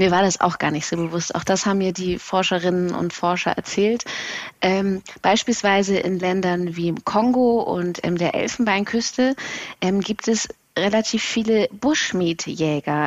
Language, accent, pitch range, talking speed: German, German, 190-245 Hz, 155 wpm